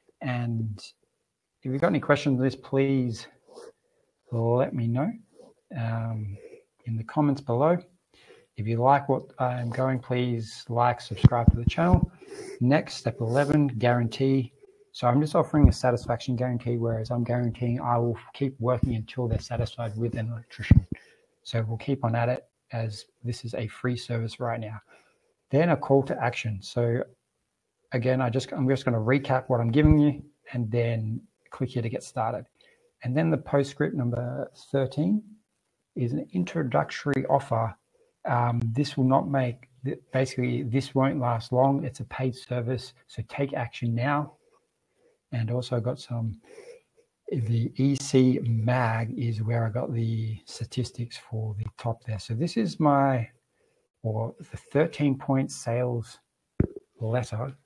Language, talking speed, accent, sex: English, 150 wpm, Australian, male